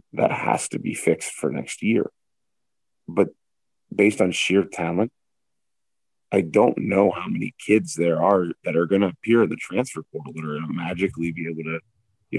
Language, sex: English, male